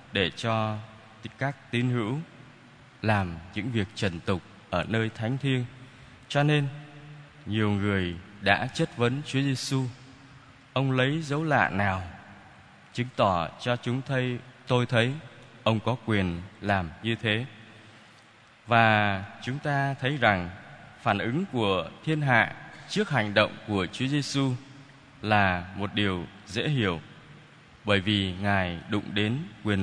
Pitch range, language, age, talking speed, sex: 105-135 Hz, Vietnamese, 20-39, 140 wpm, male